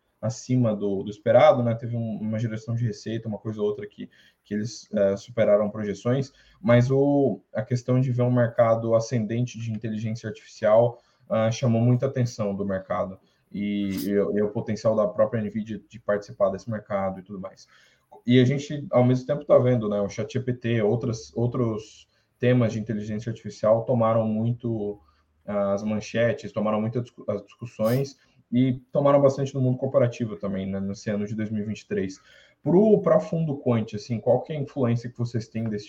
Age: 20-39